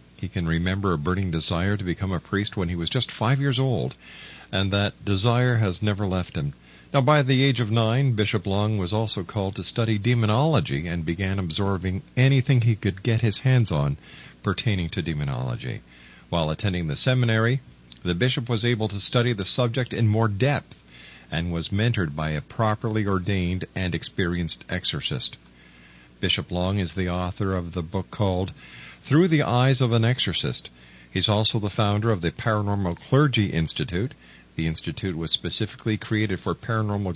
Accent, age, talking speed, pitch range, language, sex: American, 50-69, 175 wpm, 90-115 Hz, English, male